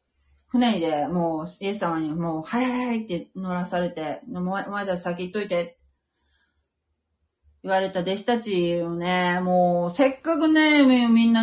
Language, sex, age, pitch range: Japanese, female, 40-59, 155-210 Hz